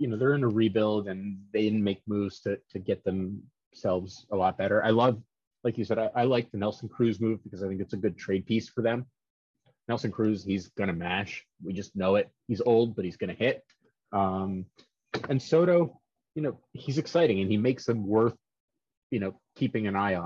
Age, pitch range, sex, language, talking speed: 30-49, 95-110 Hz, male, English, 220 wpm